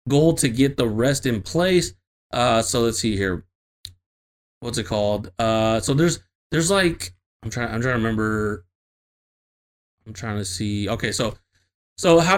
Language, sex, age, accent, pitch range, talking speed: English, male, 30-49, American, 105-165 Hz, 165 wpm